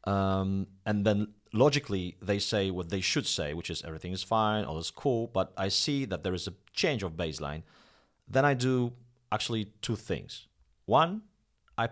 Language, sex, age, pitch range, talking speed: English, male, 40-59, 90-120 Hz, 180 wpm